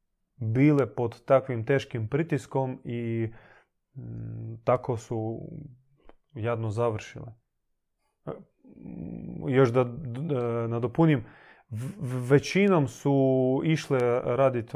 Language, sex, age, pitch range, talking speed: Croatian, male, 30-49, 115-145 Hz, 70 wpm